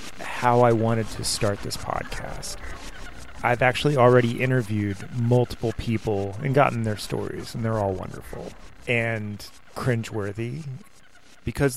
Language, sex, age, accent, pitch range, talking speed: English, male, 30-49, American, 105-130 Hz, 120 wpm